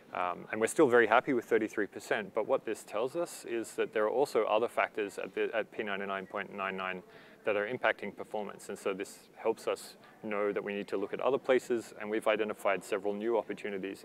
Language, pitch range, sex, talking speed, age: English, 100-130 Hz, male, 200 wpm, 20-39